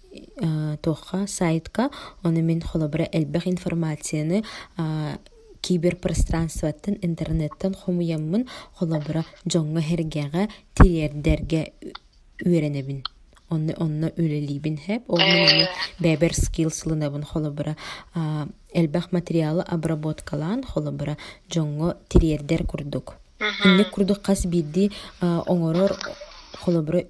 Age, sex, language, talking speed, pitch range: 20-39, female, Russian, 80 wpm, 155-180 Hz